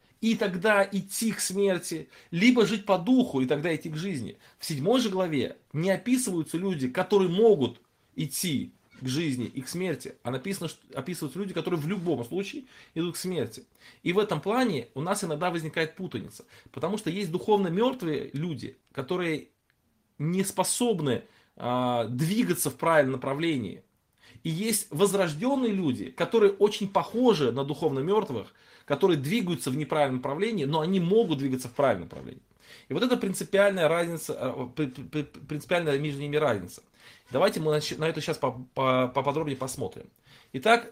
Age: 20-39